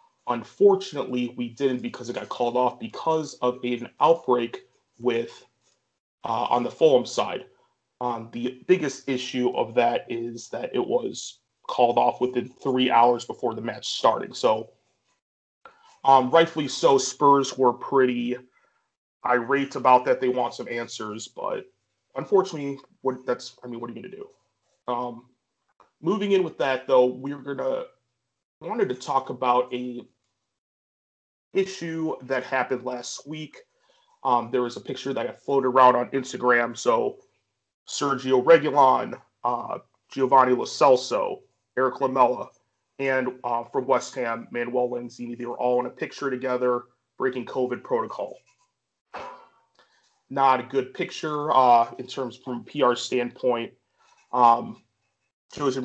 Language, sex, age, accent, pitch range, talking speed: English, male, 30-49, American, 125-160 Hz, 140 wpm